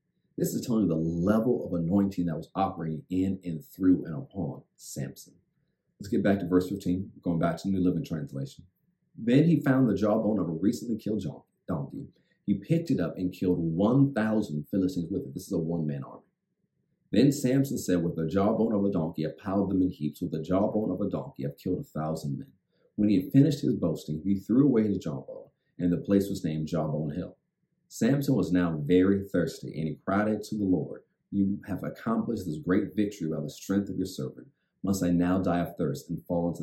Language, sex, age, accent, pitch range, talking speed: English, male, 40-59, American, 85-105 Hz, 210 wpm